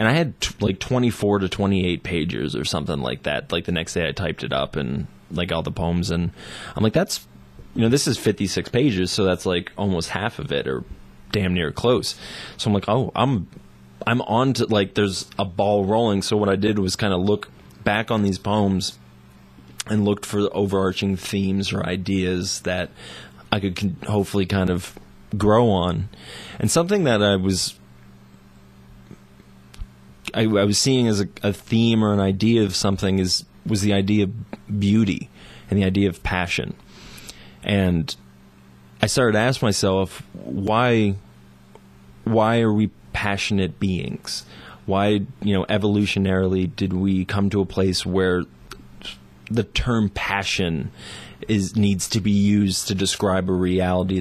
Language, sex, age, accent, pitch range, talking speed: English, male, 20-39, American, 85-105 Hz, 170 wpm